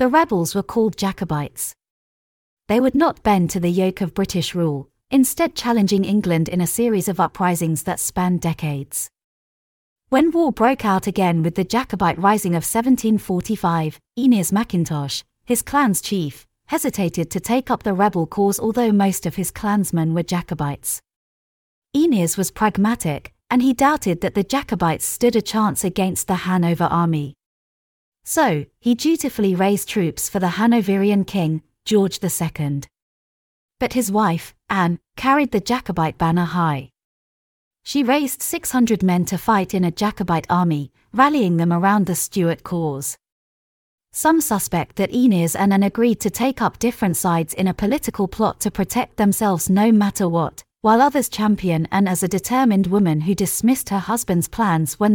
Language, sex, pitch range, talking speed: English, female, 165-220 Hz, 155 wpm